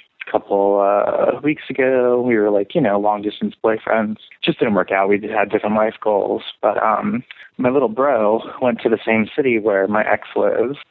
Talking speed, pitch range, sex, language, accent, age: 195 wpm, 105-125 Hz, male, English, American, 20-39